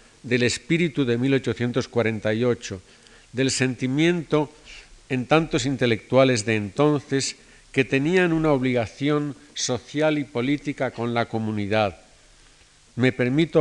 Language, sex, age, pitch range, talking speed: Spanish, male, 50-69, 120-140 Hz, 100 wpm